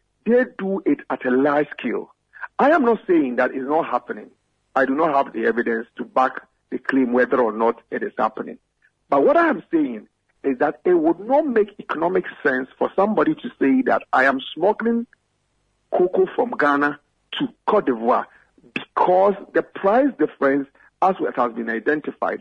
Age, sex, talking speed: 50-69, male, 175 wpm